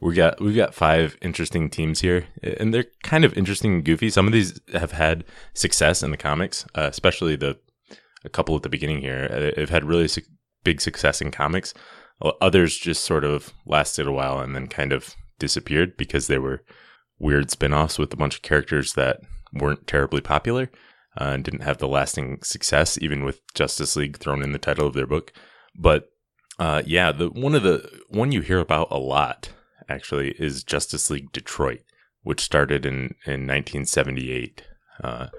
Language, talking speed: English, 185 wpm